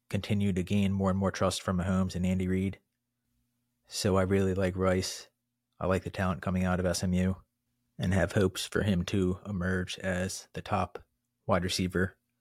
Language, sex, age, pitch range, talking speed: English, male, 30-49, 90-110 Hz, 180 wpm